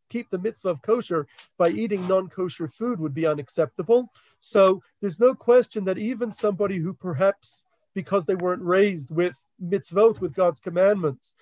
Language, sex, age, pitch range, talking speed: English, male, 40-59, 175-225 Hz, 160 wpm